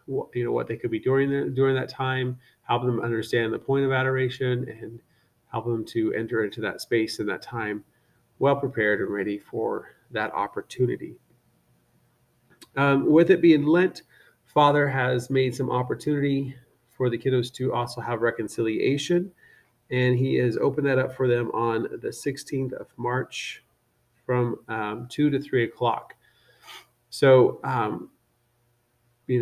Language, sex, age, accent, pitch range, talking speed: English, male, 30-49, American, 115-135 Hz, 150 wpm